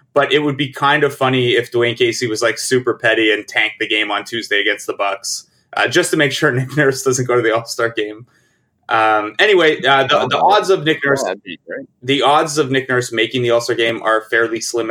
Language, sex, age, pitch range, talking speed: English, male, 20-39, 115-155 Hz, 240 wpm